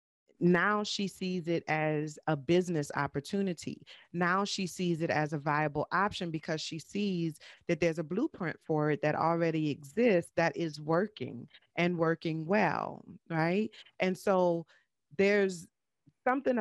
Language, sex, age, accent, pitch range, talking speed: English, female, 30-49, American, 155-185 Hz, 140 wpm